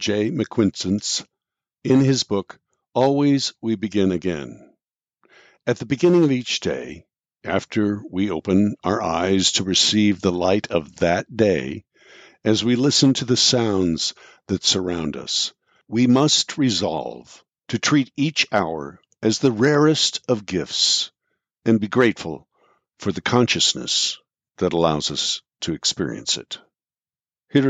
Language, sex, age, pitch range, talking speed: English, male, 60-79, 95-140 Hz, 130 wpm